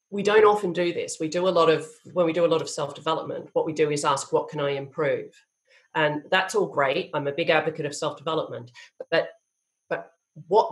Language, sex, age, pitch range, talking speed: English, female, 40-59, 165-280 Hz, 220 wpm